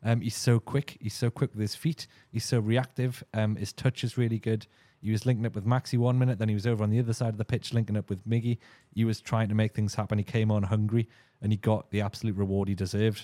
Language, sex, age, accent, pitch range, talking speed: English, male, 30-49, British, 105-125 Hz, 275 wpm